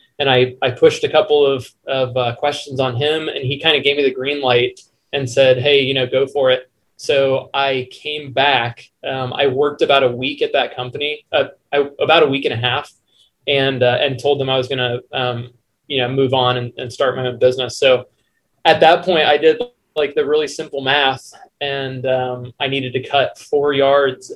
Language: English